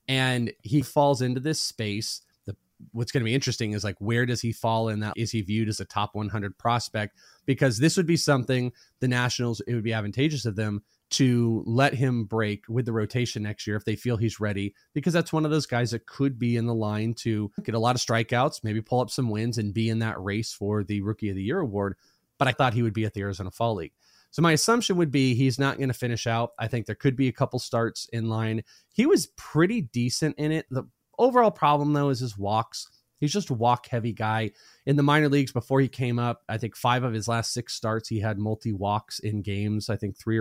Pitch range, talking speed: 110-130 Hz, 245 wpm